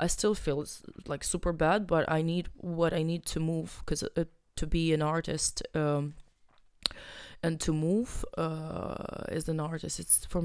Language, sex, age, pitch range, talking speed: English, female, 20-39, 160-180 Hz, 170 wpm